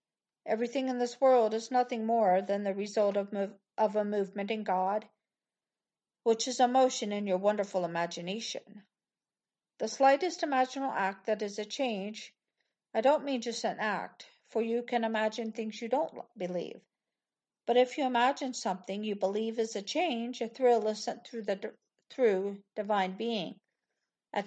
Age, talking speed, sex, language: 50-69, 160 wpm, female, English